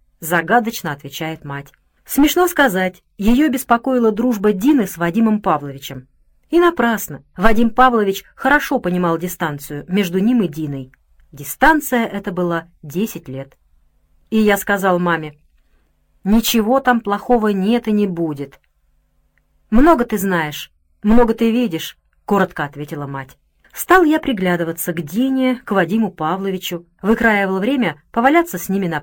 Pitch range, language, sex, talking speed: 155-235 Hz, Russian, female, 130 wpm